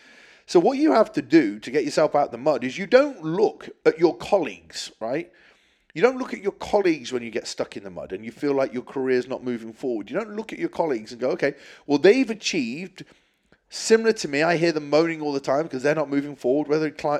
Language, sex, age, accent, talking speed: English, male, 30-49, British, 250 wpm